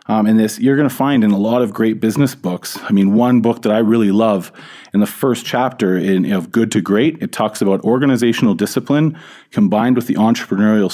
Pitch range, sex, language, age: 105-130 Hz, male, English, 30-49